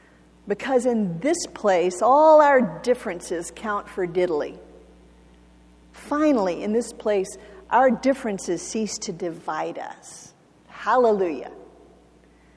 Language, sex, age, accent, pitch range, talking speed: English, female, 50-69, American, 185-270 Hz, 100 wpm